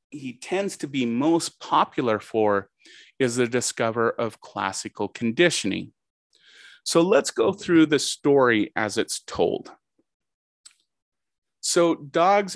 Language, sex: English, male